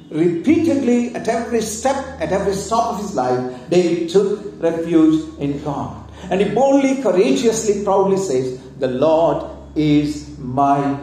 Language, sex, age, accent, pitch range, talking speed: English, male, 50-69, Indian, 155-215 Hz, 135 wpm